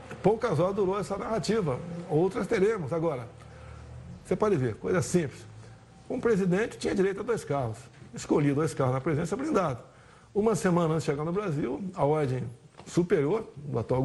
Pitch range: 140-200 Hz